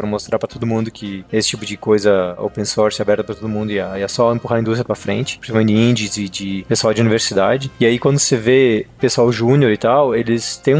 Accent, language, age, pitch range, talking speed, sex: Brazilian, Portuguese, 20-39, 110-130 Hz, 235 wpm, male